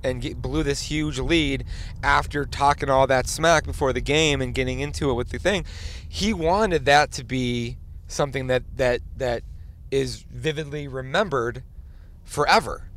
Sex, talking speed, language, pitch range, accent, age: male, 155 wpm, English, 105-150 Hz, American, 30-49